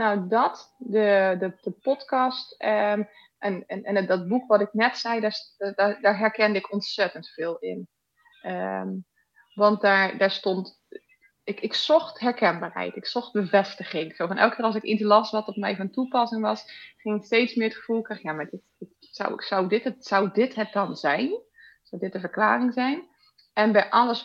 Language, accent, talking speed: Dutch, Dutch, 190 wpm